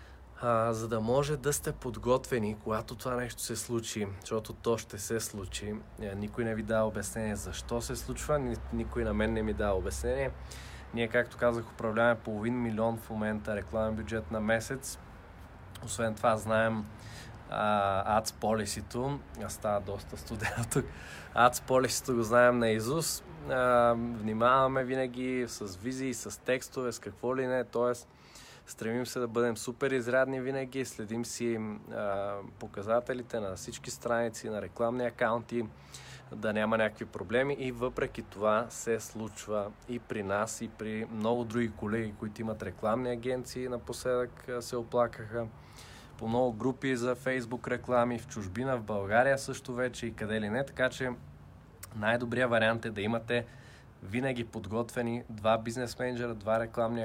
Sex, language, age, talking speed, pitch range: male, Bulgarian, 20-39, 145 wpm, 110-125 Hz